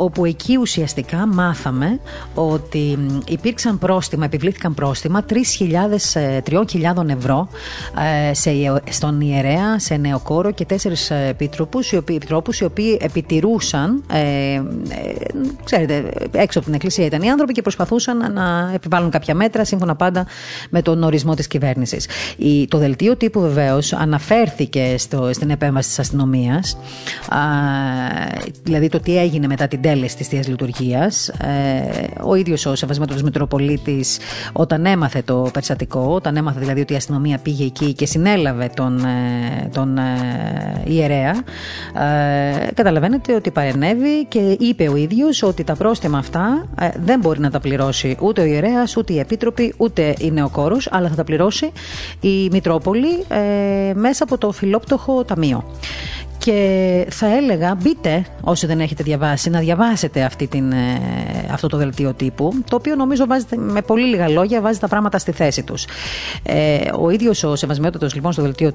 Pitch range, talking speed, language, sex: 140-195 Hz, 150 wpm, Greek, female